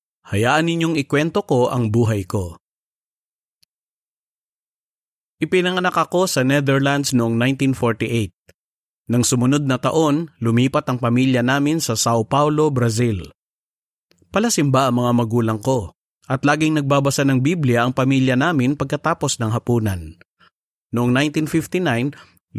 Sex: male